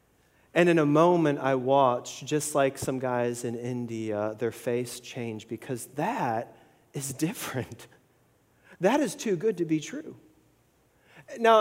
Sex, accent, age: male, American, 40-59